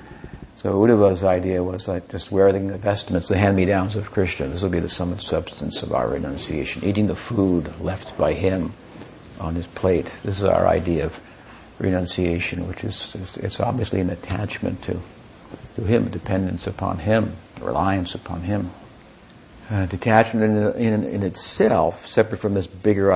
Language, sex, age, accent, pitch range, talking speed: English, male, 60-79, American, 90-100 Hz, 165 wpm